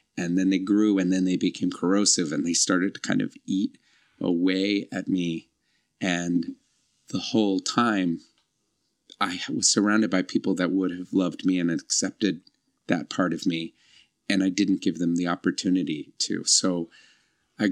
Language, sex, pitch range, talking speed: English, male, 95-110 Hz, 165 wpm